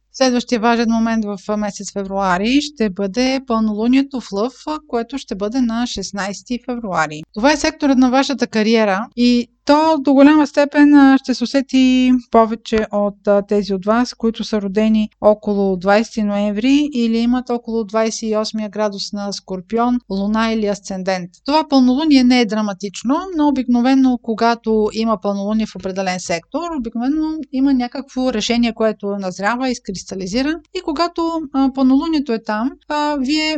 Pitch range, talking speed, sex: 205-255 Hz, 140 wpm, female